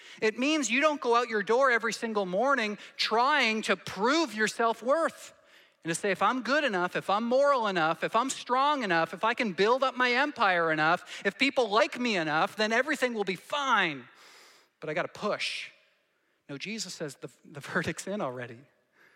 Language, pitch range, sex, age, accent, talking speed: English, 145-220 Hz, male, 40-59, American, 195 wpm